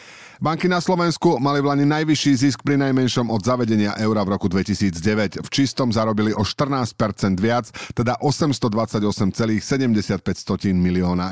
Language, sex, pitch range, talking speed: Slovak, male, 105-140 Hz, 125 wpm